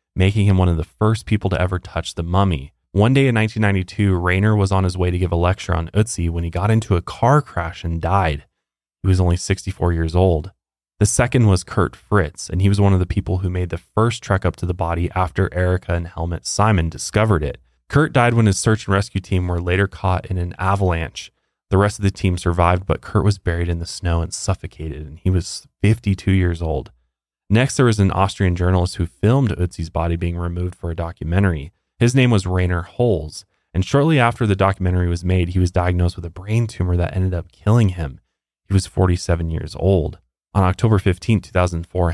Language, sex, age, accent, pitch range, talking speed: English, male, 20-39, American, 85-100 Hz, 220 wpm